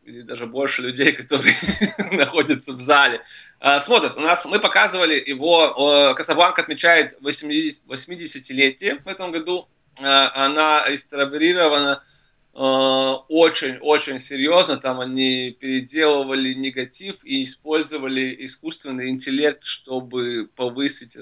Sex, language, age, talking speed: male, Russian, 20-39, 105 wpm